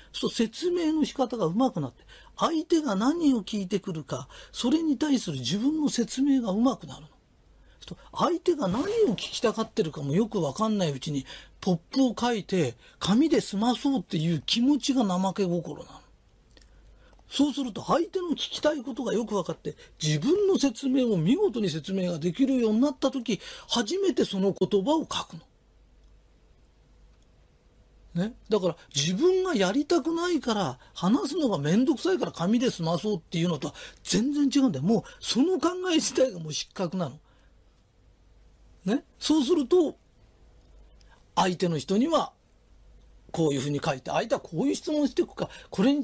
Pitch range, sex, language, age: 175-285 Hz, male, Japanese, 40-59